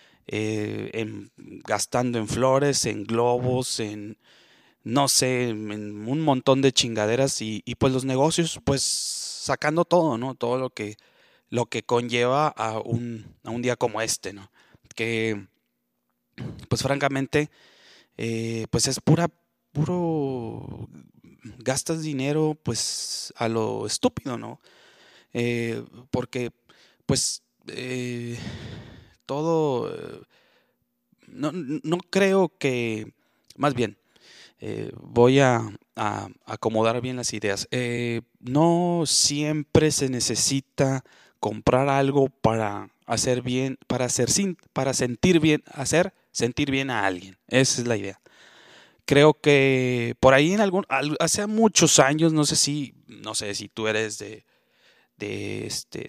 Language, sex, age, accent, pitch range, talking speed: Spanish, male, 30-49, Mexican, 115-145 Hz, 120 wpm